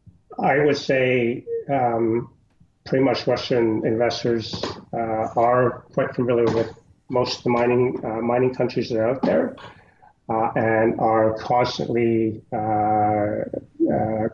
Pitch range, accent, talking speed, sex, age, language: 105-115 Hz, American, 125 wpm, male, 30-49, English